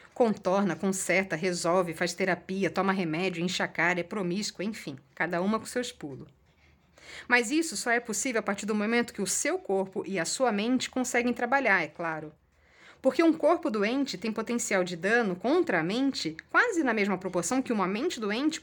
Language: Portuguese